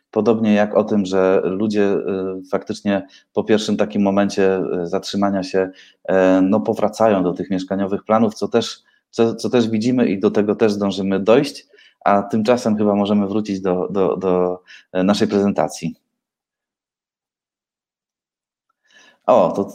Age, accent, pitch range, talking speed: 30-49, native, 100-115 Hz, 130 wpm